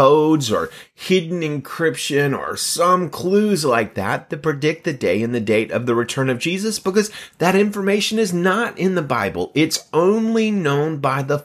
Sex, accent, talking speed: male, American, 180 wpm